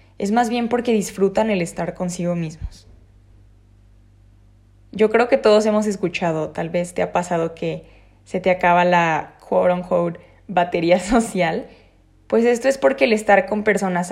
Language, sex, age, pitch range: Spanish, female, 20-39, 165-210 Hz